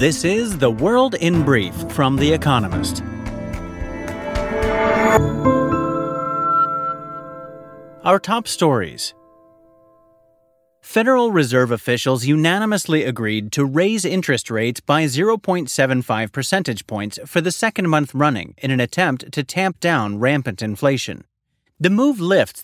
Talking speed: 110 wpm